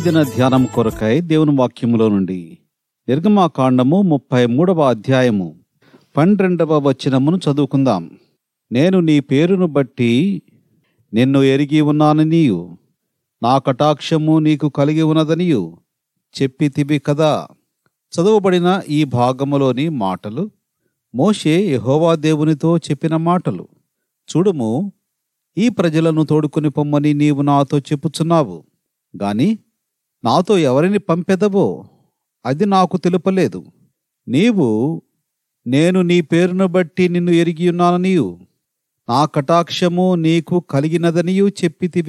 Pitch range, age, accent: 135-175 Hz, 40-59, native